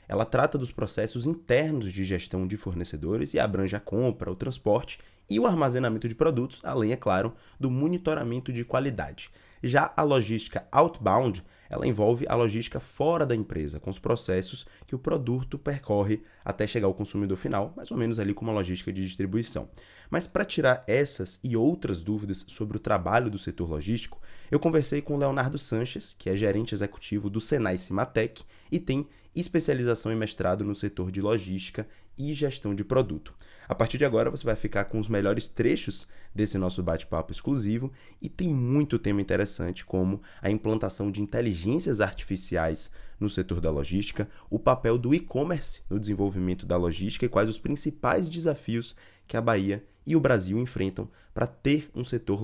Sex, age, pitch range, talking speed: male, 20-39, 95-125 Hz, 175 wpm